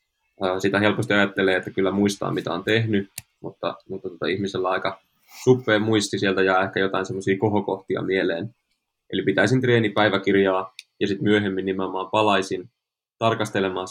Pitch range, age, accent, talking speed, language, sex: 95-110 Hz, 20-39, native, 150 wpm, Finnish, male